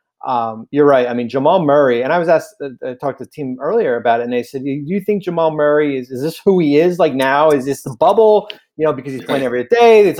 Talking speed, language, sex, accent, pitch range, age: 290 wpm, English, male, American, 120-160 Hz, 30-49